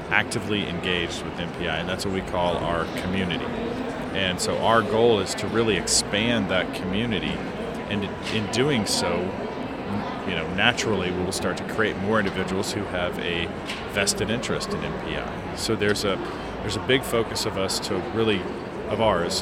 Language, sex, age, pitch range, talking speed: English, male, 40-59, 95-115 Hz, 165 wpm